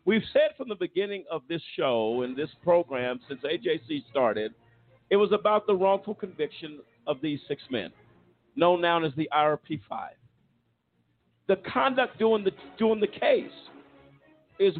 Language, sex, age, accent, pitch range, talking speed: English, male, 50-69, American, 185-260 Hz, 145 wpm